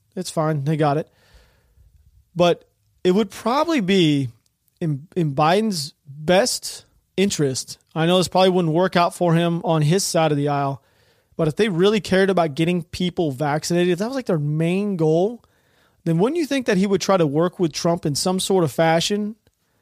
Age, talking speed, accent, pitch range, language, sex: 30-49, 190 wpm, American, 160-195 Hz, English, male